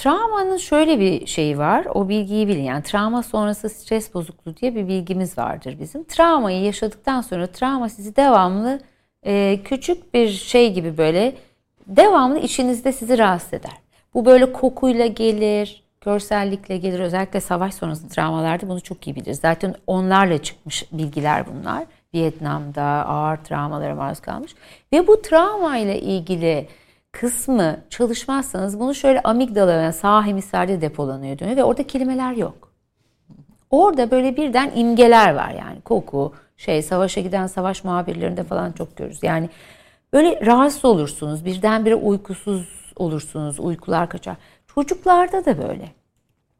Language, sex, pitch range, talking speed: Turkish, female, 180-260 Hz, 135 wpm